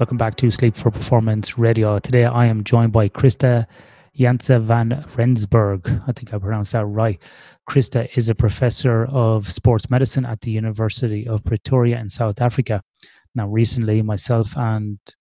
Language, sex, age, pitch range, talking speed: English, male, 30-49, 105-125 Hz, 160 wpm